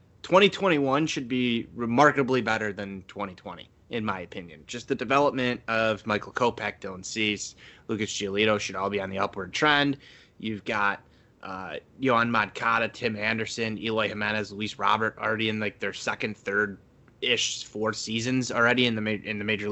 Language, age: English, 20-39